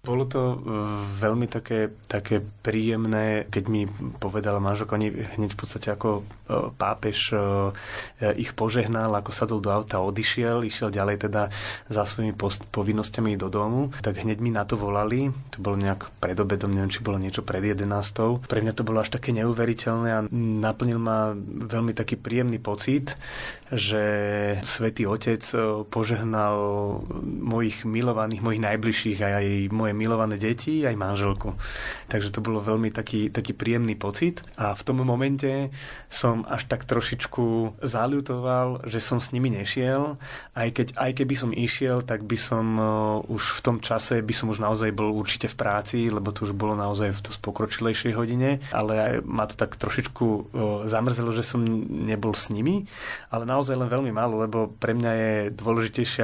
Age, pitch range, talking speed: 20-39, 105-120 Hz, 165 wpm